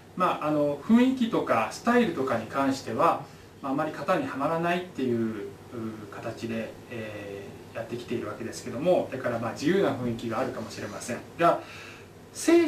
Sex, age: male, 20-39